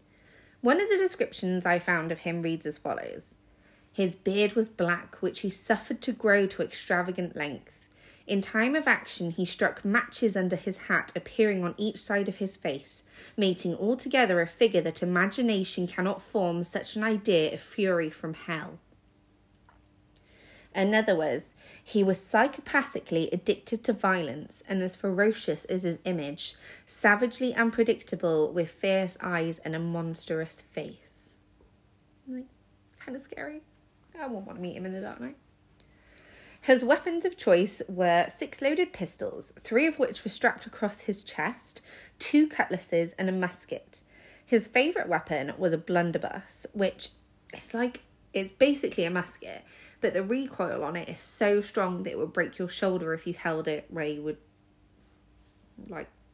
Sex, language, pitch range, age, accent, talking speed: female, English, 165-220 Hz, 30-49, British, 155 wpm